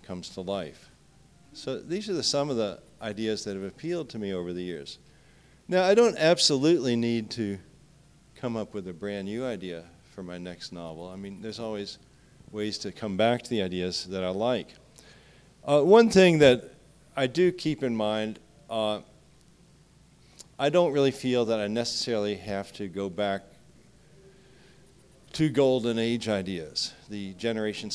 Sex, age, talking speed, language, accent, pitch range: male, 50-69, 165 wpm, English, American, 100-135 Hz